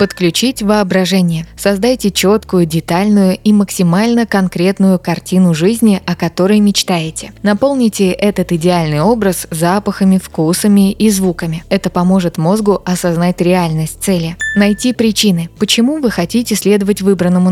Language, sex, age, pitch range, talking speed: Russian, female, 20-39, 170-205 Hz, 115 wpm